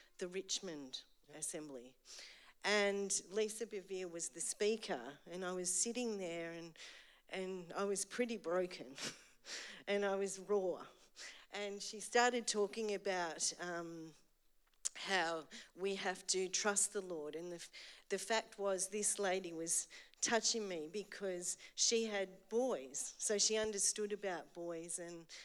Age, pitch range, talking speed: 50-69, 165-200 Hz, 135 wpm